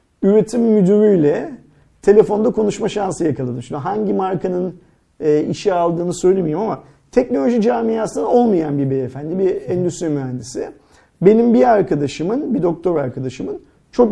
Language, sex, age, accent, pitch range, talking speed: Turkish, male, 40-59, native, 155-210 Hz, 120 wpm